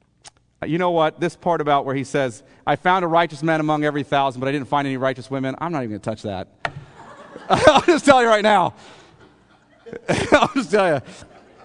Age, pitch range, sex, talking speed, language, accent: 40-59, 115-165 Hz, male, 210 wpm, English, American